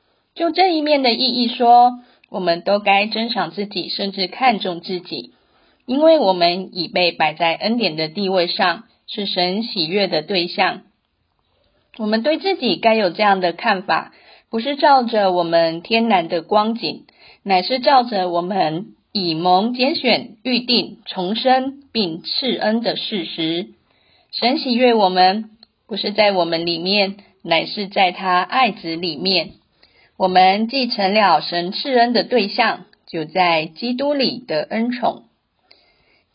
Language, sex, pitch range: Chinese, female, 180-240 Hz